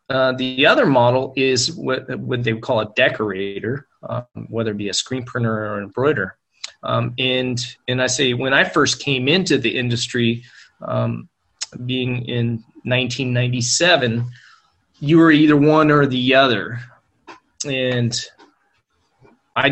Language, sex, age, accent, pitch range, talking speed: English, male, 20-39, American, 120-135 Hz, 150 wpm